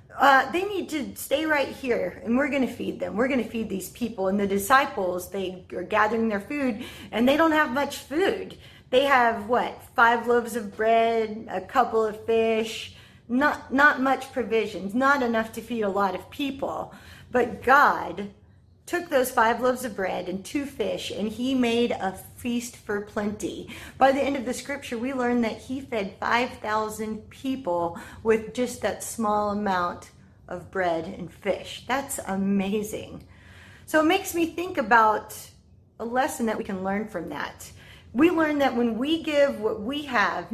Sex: female